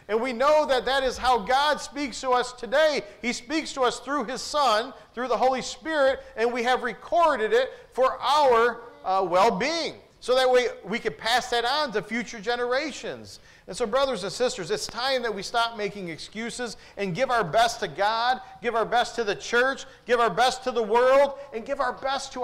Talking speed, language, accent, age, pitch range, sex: 210 wpm, English, American, 40-59, 205-255 Hz, male